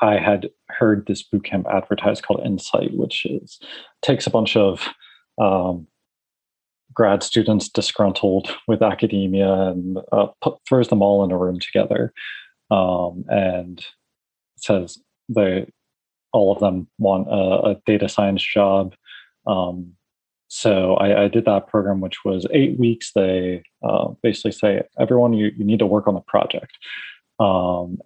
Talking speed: 145 wpm